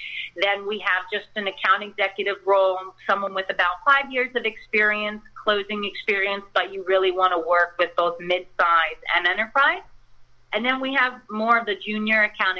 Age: 40-59